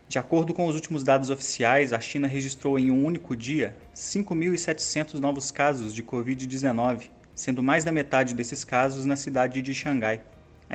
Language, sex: Portuguese, male